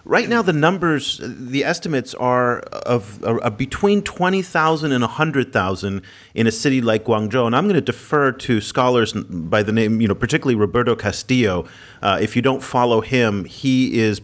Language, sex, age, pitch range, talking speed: English, male, 40-59, 105-135 Hz, 175 wpm